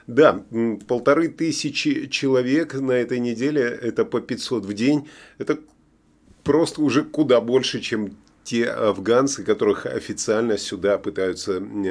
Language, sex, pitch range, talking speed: Russian, male, 115-165 Hz, 120 wpm